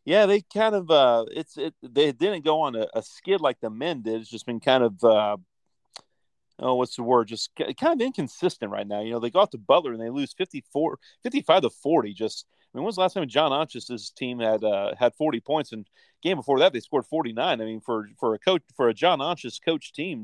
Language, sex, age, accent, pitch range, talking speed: English, male, 40-59, American, 115-155 Hz, 250 wpm